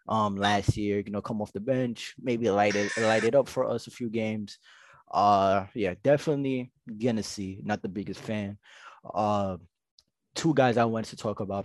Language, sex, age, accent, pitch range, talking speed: English, male, 20-39, American, 105-125 Hz, 190 wpm